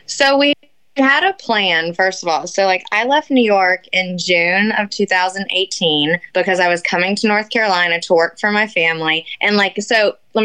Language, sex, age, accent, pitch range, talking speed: English, female, 20-39, American, 175-210 Hz, 195 wpm